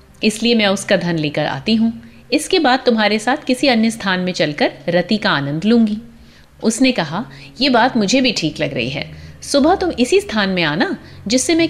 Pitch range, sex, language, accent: 180-270 Hz, female, Hindi, native